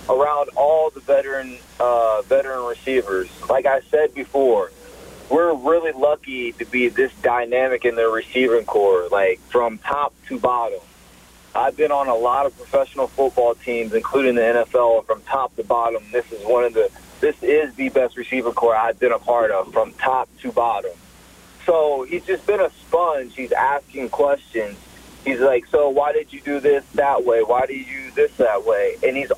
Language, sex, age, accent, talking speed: English, male, 30-49, American, 185 wpm